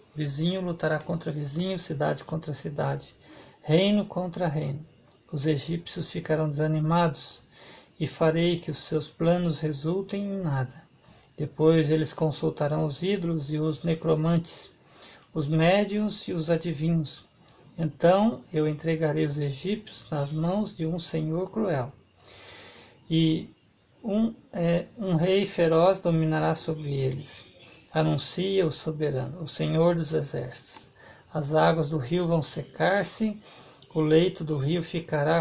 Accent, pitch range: Brazilian, 155-180 Hz